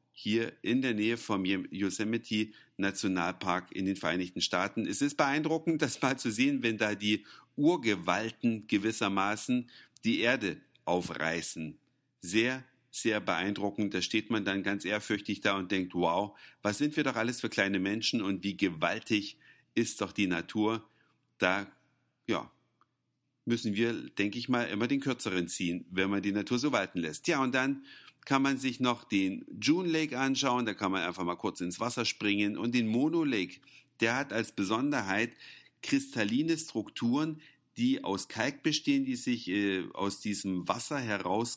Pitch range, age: 100-130 Hz, 50-69